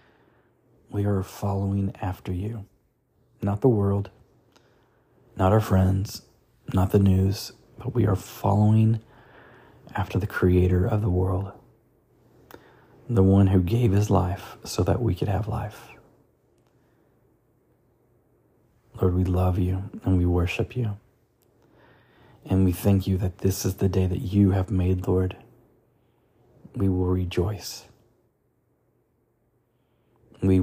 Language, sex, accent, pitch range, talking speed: English, male, American, 95-120 Hz, 120 wpm